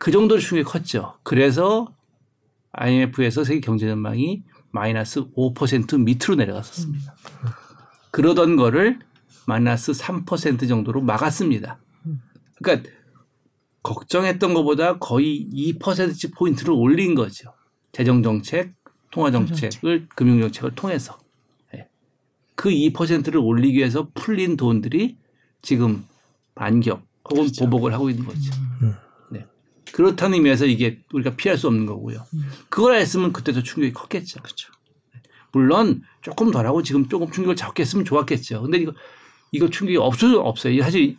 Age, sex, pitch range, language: 50-69, male, 125-170 Hz, Korean